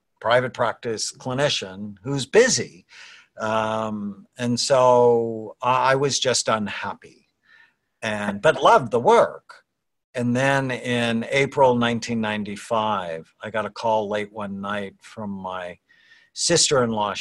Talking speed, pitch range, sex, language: 110 wpm, 100-120 Hz, male, English